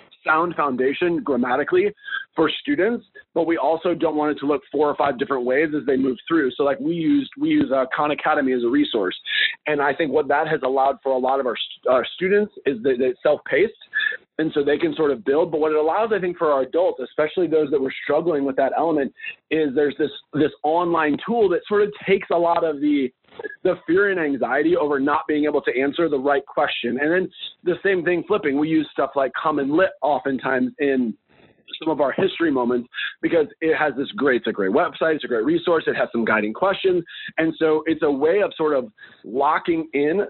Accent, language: American, English